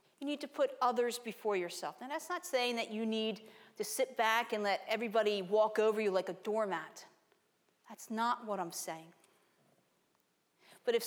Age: 40-59